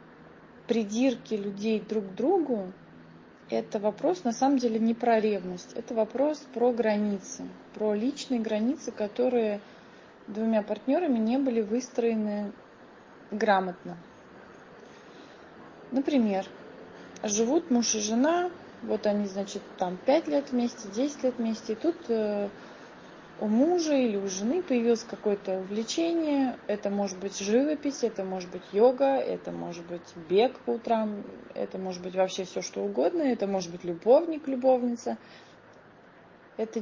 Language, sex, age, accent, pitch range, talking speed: Russian, female, 20-39, native, 205-255 Hz, 130 wpm